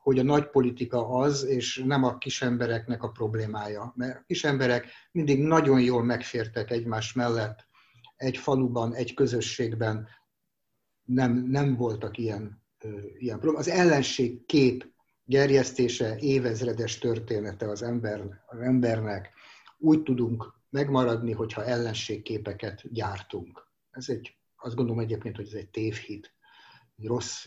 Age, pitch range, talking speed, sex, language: 60-79, 115-140 Hz, 125 wpm, male, Hungarian